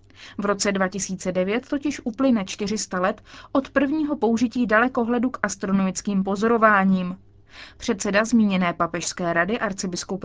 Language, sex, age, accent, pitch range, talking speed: Czech, female, 30-49, native, 190-240 Hz, 110 wpm